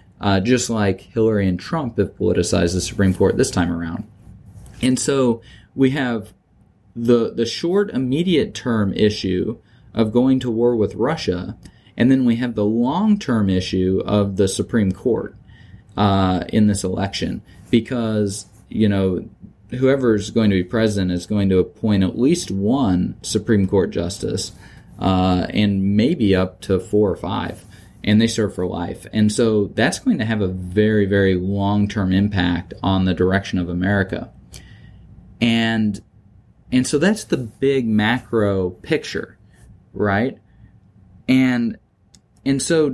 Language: English